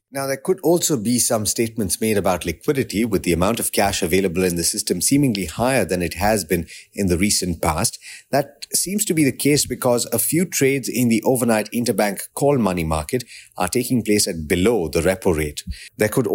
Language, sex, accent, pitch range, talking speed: English, male, Indian, 100-130 Hz, 205 wpm